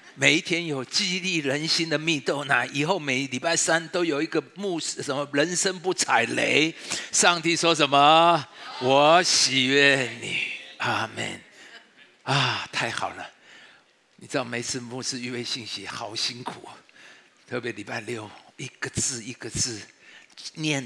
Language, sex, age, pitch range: Chinese, male, 50-69, 120-160 Hz